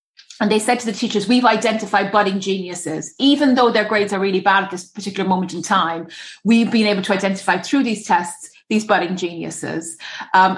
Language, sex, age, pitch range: English, female, 30-49, 190-220 Hz